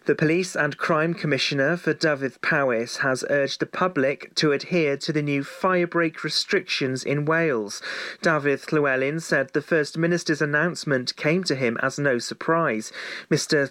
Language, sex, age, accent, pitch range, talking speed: English, male, 40-59, British, 135-165 Hz, 155 wpm